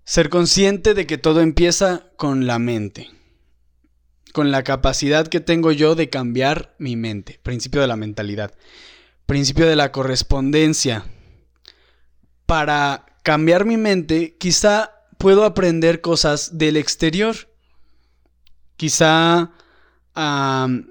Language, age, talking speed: Spanish, 20-39, 110 wpm